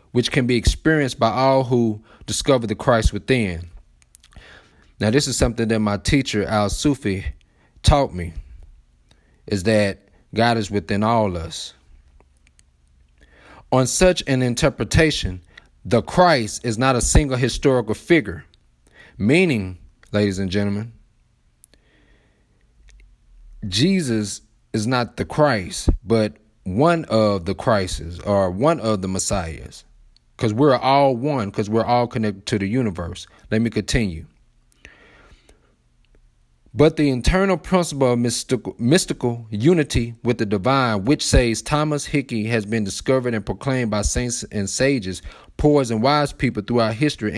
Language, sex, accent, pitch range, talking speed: English, male, American, 100-130 Hz, 130 wpm